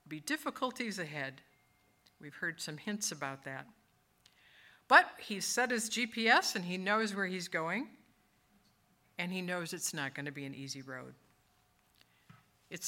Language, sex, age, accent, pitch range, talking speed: English, female, 50-69, American, 160-225 Hz, 150 wpm